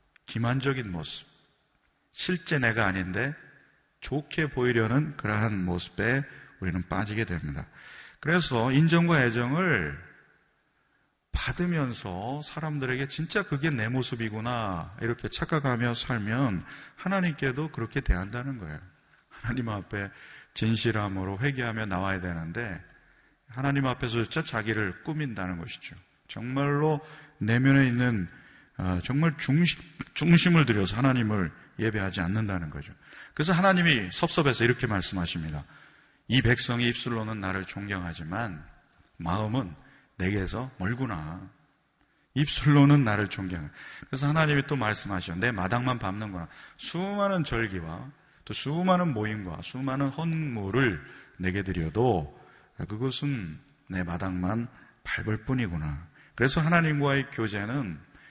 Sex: male